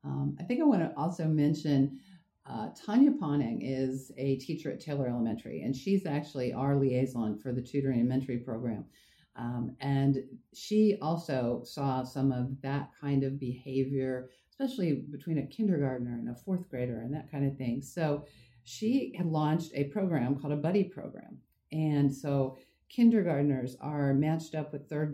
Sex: female